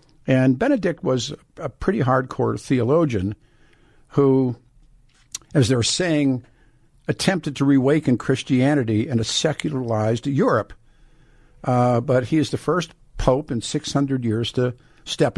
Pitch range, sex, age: 120-150 Hz, male, 50-69